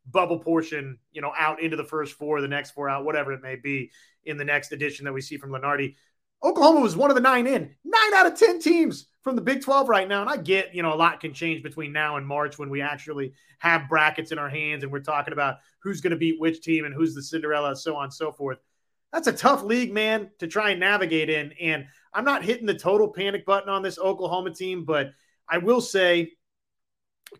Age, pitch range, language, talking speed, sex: 30-49, 150-200 Hz, English, 245 wpm, male